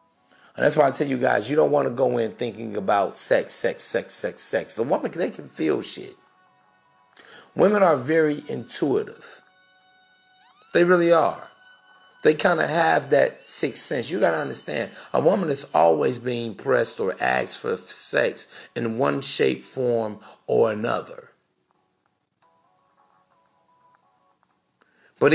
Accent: American